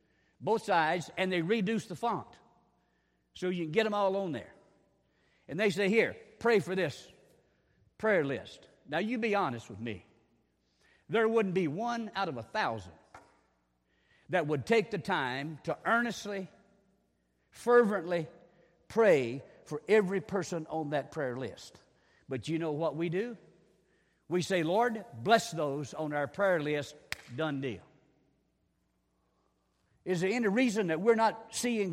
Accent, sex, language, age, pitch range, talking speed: American, male, English, 60-79, 150-215 Hz, 150 wpm